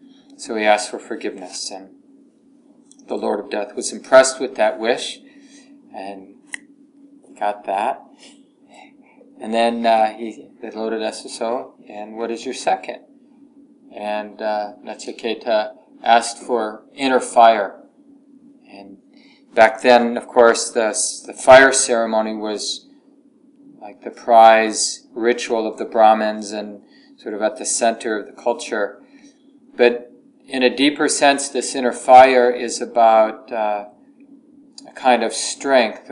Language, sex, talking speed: English, male, 130 wpm